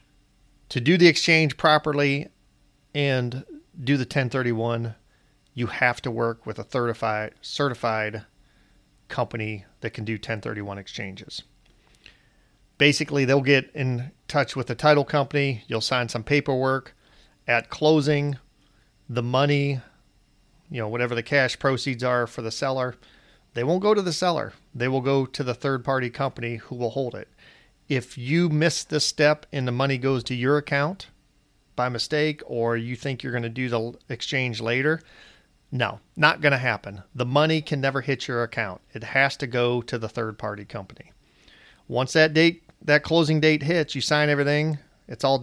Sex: male